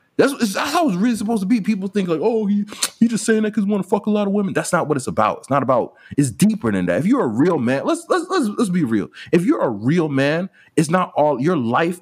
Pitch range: 105-150 Hz